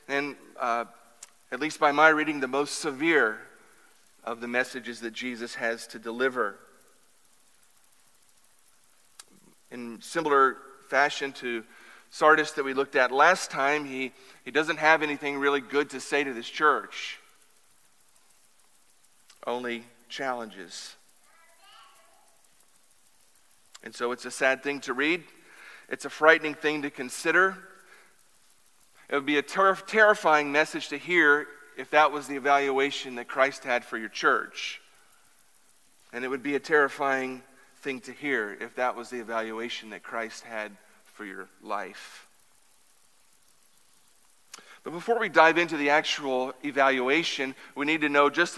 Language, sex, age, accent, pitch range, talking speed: English, male, 40-59, American, 130-155 Hz, 135 wpm